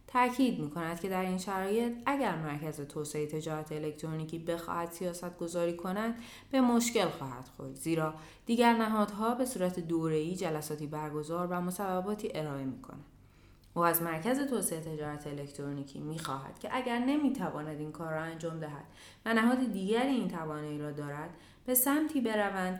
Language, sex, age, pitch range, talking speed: Persian, female, 20-39, 150-200 Hz, 145 wpm